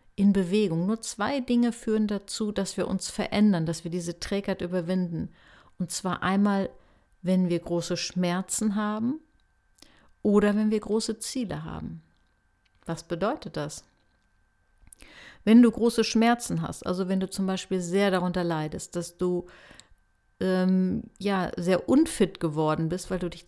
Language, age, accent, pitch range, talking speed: German, 50-69, German, 180-215 Hz, 145 wpm